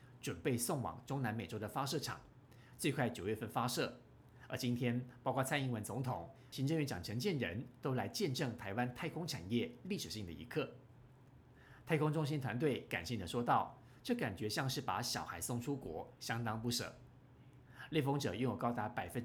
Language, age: Chinese, 50-69